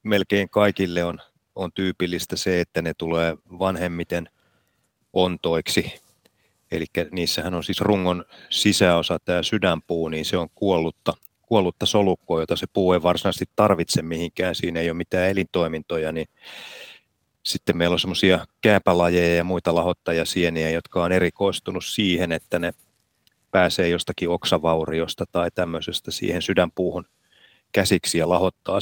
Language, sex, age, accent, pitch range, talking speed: Finnish, male, 30-49, native, 85-95 Hz, 130 wpm